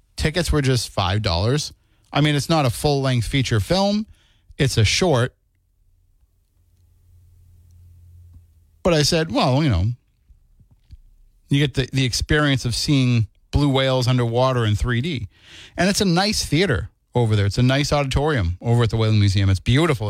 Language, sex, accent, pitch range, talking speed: English, male, American, 100-135 Hz, 150 wpm